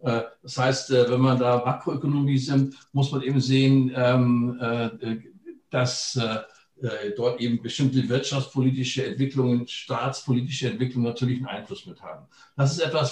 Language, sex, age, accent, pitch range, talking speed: Danish, male, 60-79, German, 125-135 Hz, 125 wpm